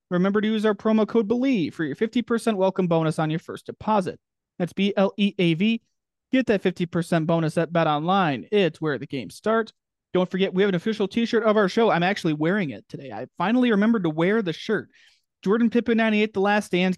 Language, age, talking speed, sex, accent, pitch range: English, 30-49, 200 wpm, male, American, 165-210 Hz